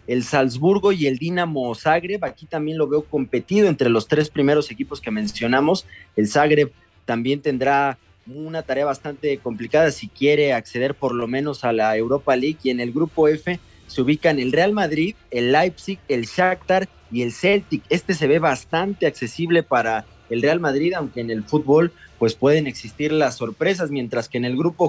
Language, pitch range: English, 120-160 Hz